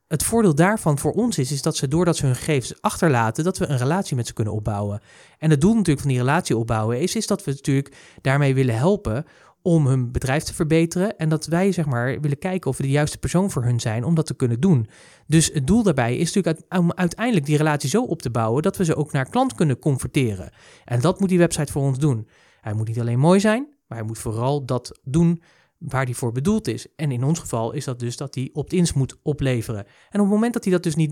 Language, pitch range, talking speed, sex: Dutch, 130-185 Hz, 255 wpm, male